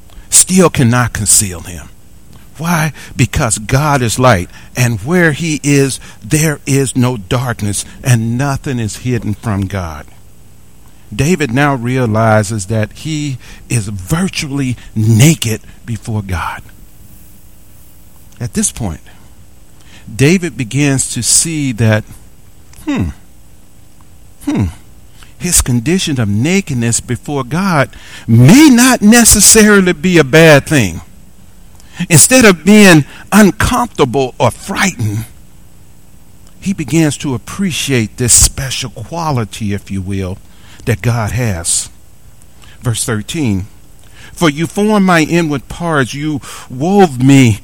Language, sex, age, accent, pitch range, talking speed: English, male, 50-69, American, 105-155 Hz, 110 wpm